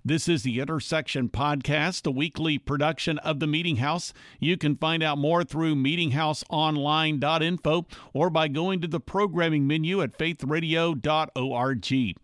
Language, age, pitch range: English, 50-69, 135-175 Hz